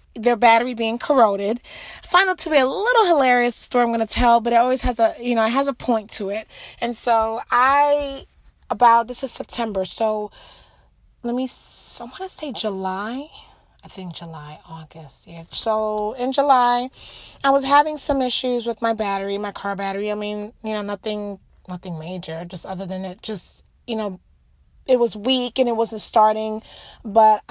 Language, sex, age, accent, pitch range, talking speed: English, female, 30-49, American, 215-260 Hz, 185 wpm